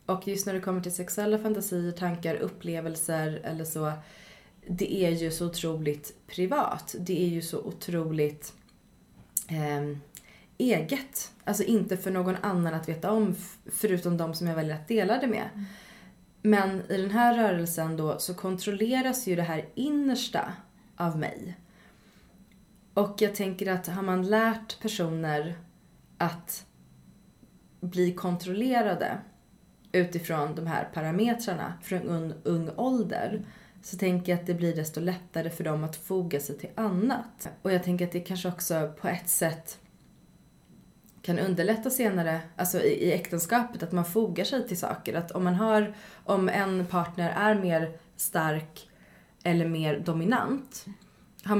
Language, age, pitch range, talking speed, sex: Swedish, 30-49, 165-205 Hz, 145 wpm, female